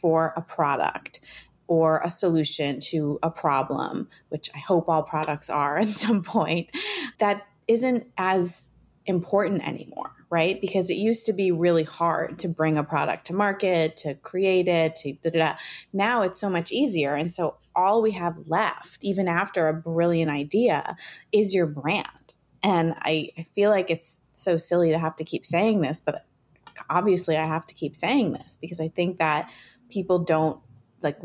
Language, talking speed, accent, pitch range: English, 175 wpm, American, 155-180 Hz